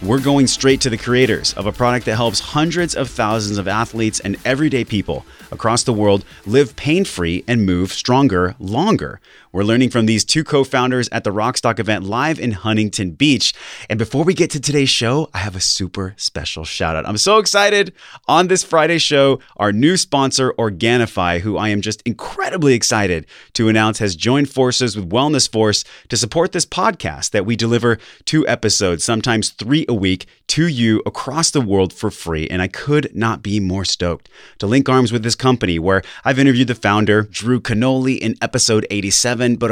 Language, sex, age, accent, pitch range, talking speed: English, male, 30-49, American, 100-130 Hz, 190 wpm